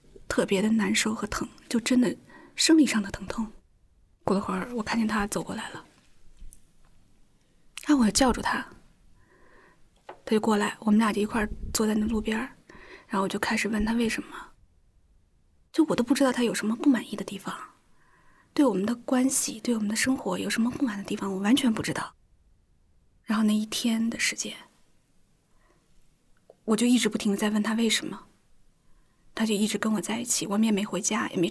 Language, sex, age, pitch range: Chinese, female, 30-49, 210-240 Hz